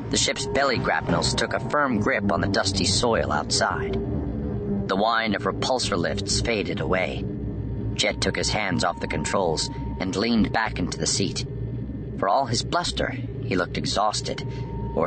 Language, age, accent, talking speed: English, 40-59, American, 165 wpm